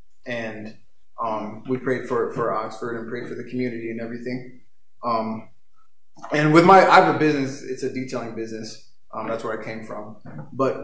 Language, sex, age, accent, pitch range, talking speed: English, male, 20-39, American, 125-150 Hz, 185 wpm